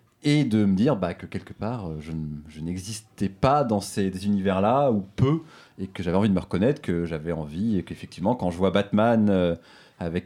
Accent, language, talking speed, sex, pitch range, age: French, French, 205 wpm, male, 90-120 Hz, 30-49